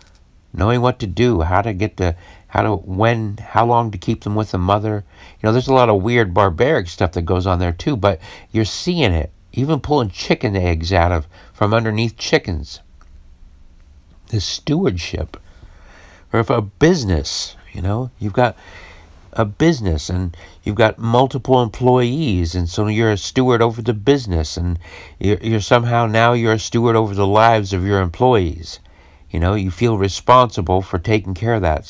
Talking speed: 180 wpm